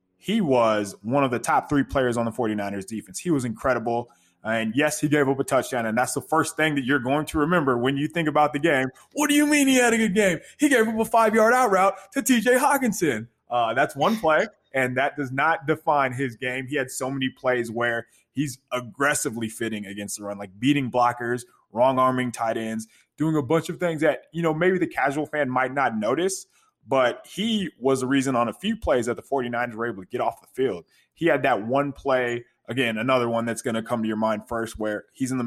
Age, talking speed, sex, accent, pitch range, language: 20-39, 235 wpm, male, American, 115-150 Hz, English